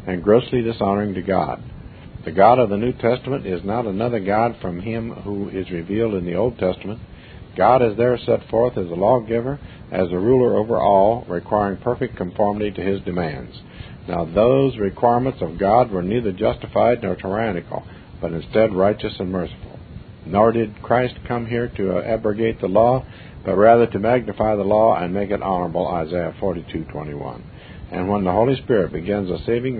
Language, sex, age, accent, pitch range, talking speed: English, male, 50-69, American, 90-115 Hz, 175 wpm